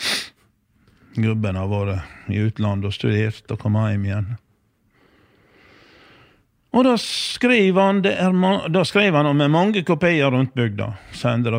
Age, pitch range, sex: 50-69, 105-130 Hz, male